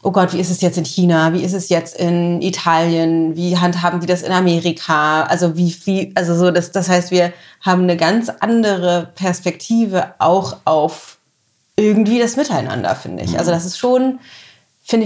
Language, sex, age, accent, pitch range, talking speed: German, female, 30-49, German, 175-200 Hz, 185 wpm